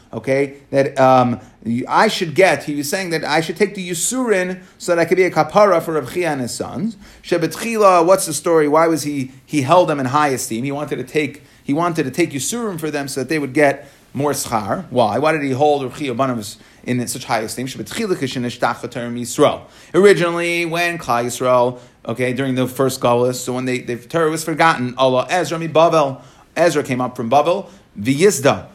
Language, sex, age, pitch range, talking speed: English, male, 30-49, 130-180 Hz, 205 wpm